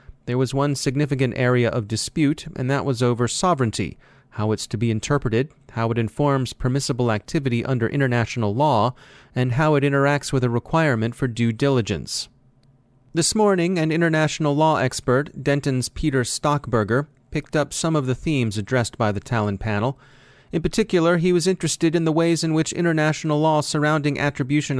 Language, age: English, 30-49